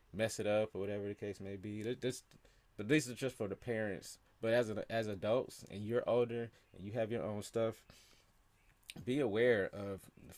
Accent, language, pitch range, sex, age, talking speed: American, English, 100-120 Hz, male, 20-39, 200 wpm